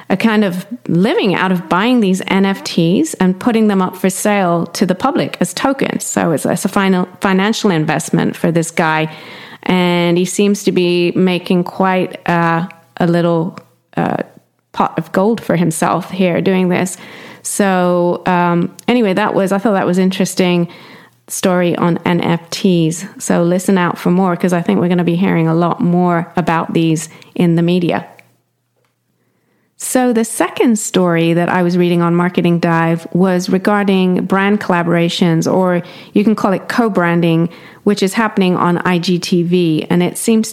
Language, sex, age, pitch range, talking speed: English, female, 30-49, 175-195 Hz, 165 wpm